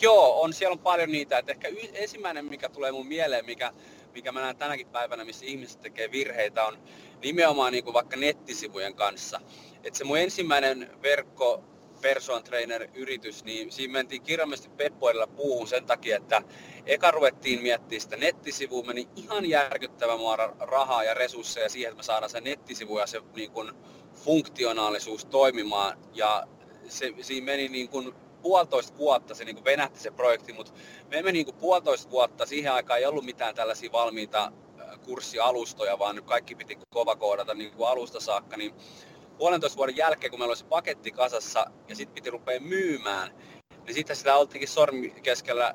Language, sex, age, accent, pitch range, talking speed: Finnish, male, 30-49, native, 115-145 Hz, 165 wpm